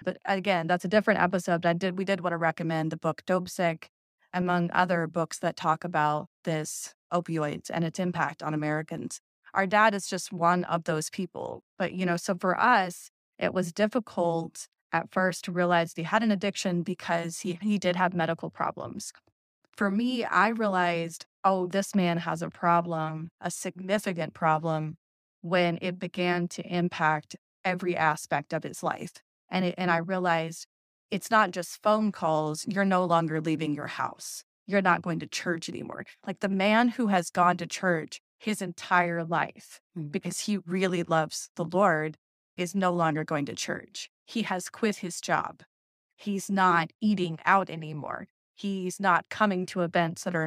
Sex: female